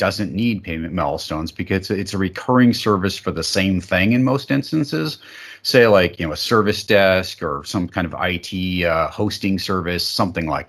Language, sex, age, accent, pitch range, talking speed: English, male, 40-59, American, 90-115 Hz, 185 wpm